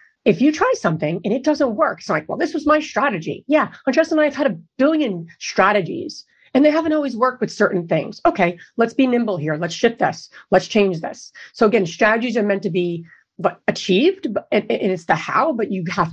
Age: 30-49